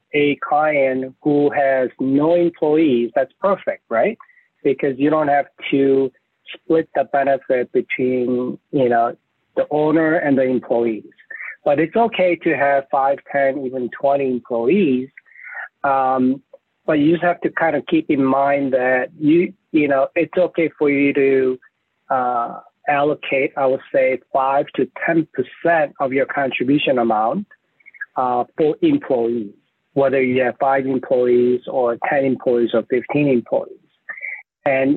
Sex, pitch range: male, 130-165 Hz